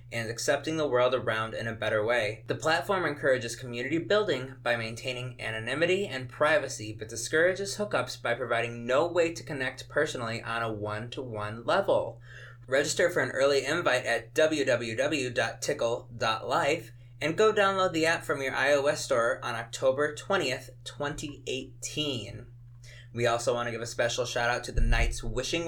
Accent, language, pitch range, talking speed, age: American, English, 120-140 Hz, 150 wpm, 20-39